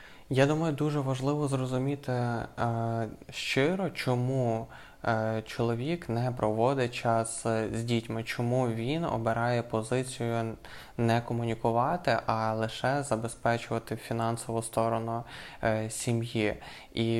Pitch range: 115-125 Hz